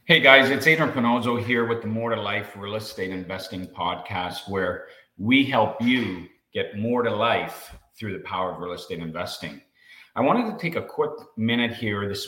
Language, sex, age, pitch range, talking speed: English, male, 40-59, 95-120 Hz, 190 wpm